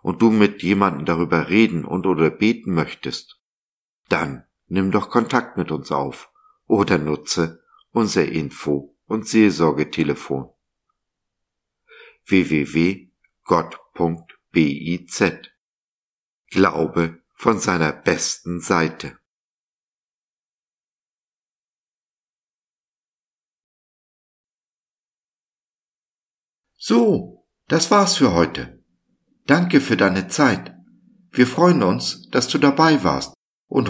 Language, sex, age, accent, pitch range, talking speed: German, male, 50-69, German, 80-120 Hz, 80 wpm